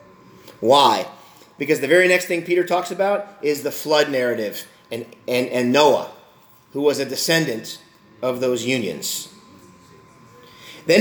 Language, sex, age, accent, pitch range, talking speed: English, male, 40-59, American, 160-200 Hz, 135 wpm